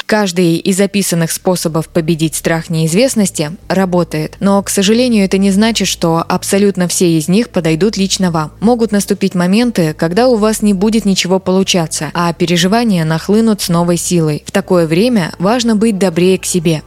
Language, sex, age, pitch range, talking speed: Russian, female, 20-39, 165-210 Hz, 165 wpm